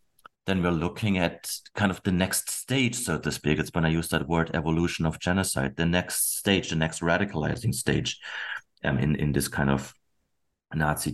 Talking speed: 190 wpm